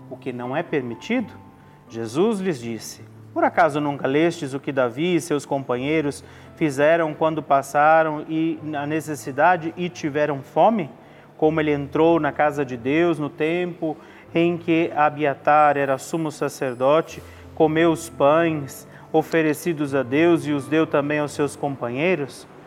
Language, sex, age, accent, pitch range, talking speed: Portuguese, male, 30-49, Brazilian, 130-165 Hz, 145 wpm